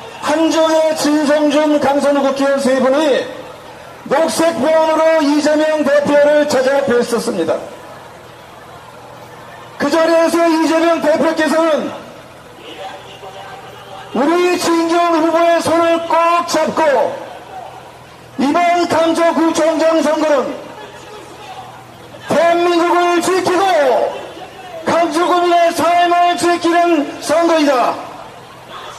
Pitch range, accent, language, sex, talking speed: 295-345 Hz, Korean, English, male, 65 wpm